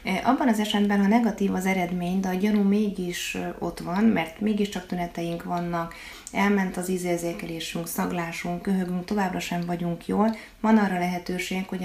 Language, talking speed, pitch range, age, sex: Hungarian, 150 wpm, 175-200 Hz, 30-49, female